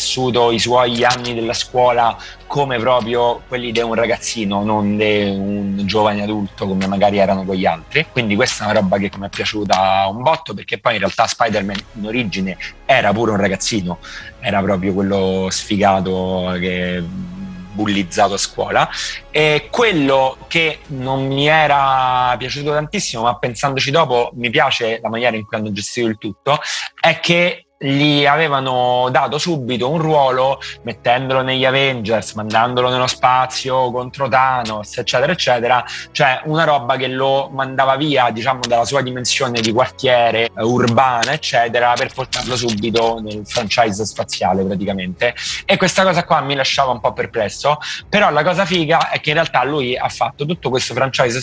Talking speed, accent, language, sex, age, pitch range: 160 wpm, native, Italian, male, 30-49, 105-135 Hz